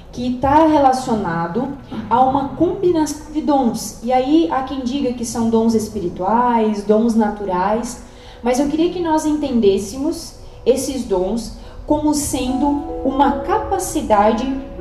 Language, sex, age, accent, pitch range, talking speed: Portuguese, female, 20-39, Brazilian, 210-275 Hz, 125 wpm